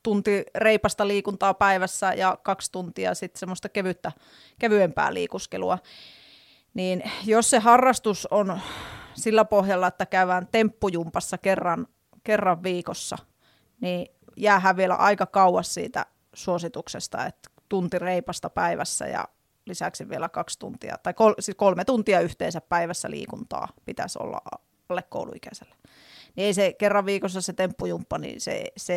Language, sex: Finnish, female